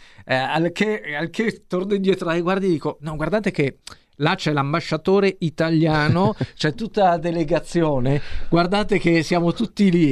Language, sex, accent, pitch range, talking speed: Italian, male, native, 135-180 Hz, 150 wpm